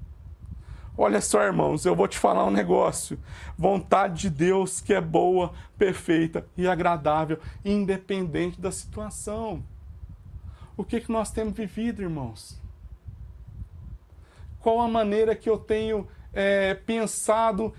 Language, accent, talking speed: Portuguese, Brazilian, 120 wpm